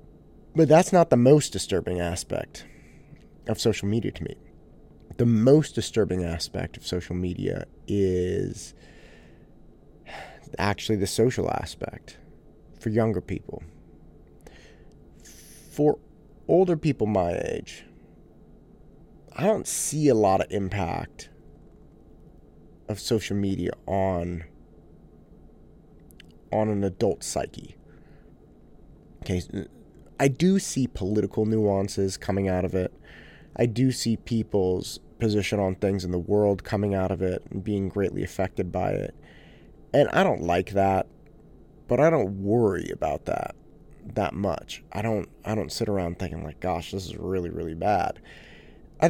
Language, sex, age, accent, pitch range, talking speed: English, male, 30-49, American, 90-110 Hz, 130 wpm